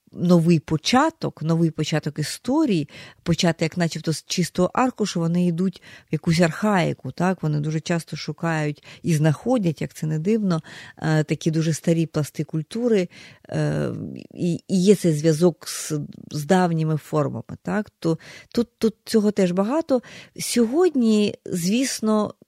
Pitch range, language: 155-195 Hz, Ukrainian